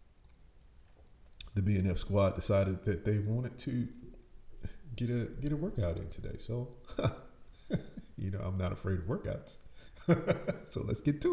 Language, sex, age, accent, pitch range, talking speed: English, male, 40-59, American, 90-105 Hz, 145 wpm